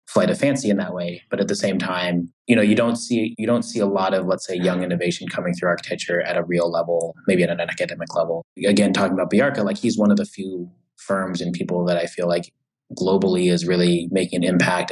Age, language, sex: 20-39, English, male